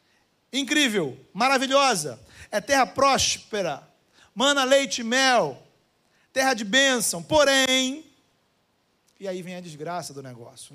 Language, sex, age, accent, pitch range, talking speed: Portuguese, male, 40-59, Brazilian, 215-295 Hz, 110 wpm